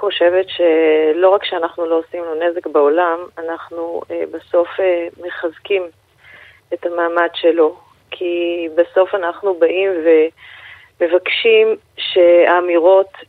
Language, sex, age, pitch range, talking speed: Hebrew, female, 30-49, 175-215 Hz, 100 wpm